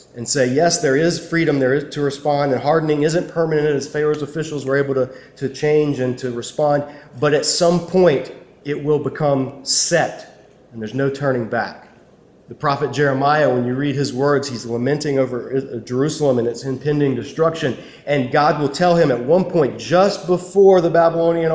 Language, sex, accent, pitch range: English, male, American, 125-150 Hz